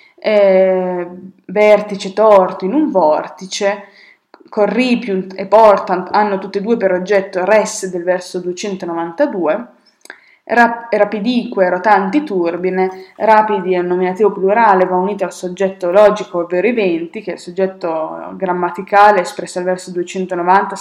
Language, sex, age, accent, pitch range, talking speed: Italian, female, 20-39, native, 180-210 Hz, 125 wpm